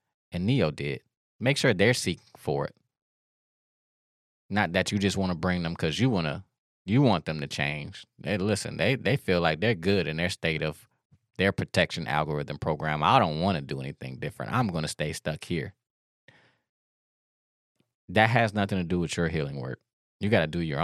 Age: 20-39